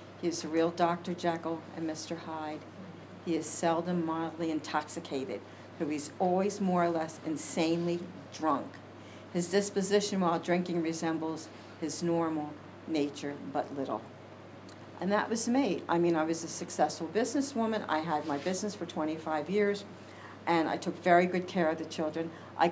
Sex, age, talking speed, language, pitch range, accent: female, 60-79, 160 wpm, English, 150-175 Hz, American